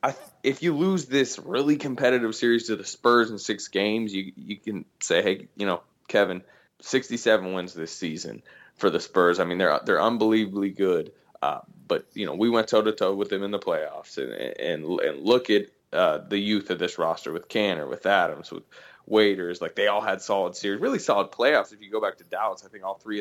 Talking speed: 225 wpm